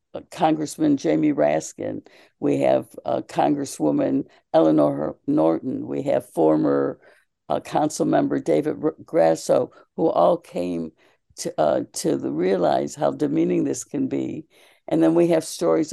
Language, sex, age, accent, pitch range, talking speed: English, female, 60-79, American, 140-170 Hz, 140 wpm